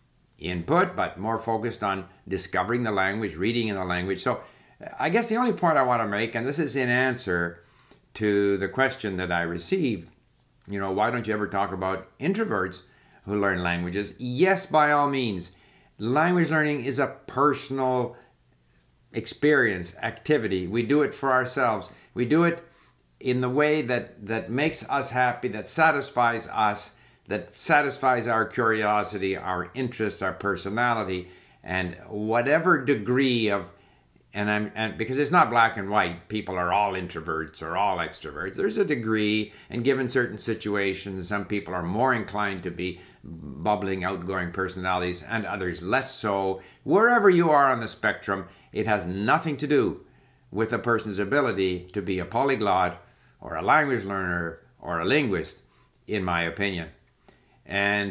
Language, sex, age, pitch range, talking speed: English, male, 60-79, 95-130 Hz, 160 wpm